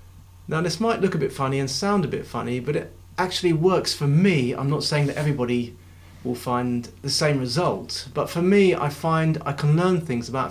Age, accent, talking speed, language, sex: 30-49, British, 215 wpm, English, male